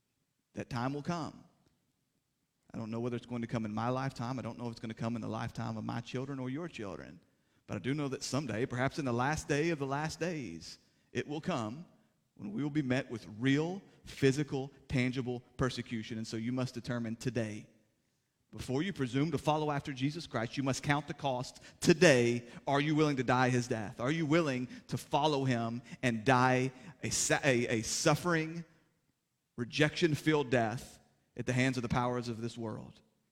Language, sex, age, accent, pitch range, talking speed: English, male, 30-49, American, 120-150 Hz, 195 wpm